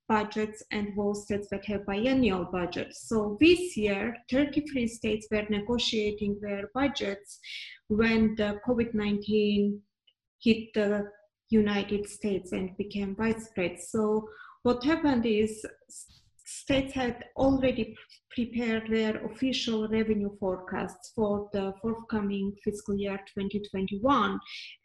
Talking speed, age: 110 wpm, 20-39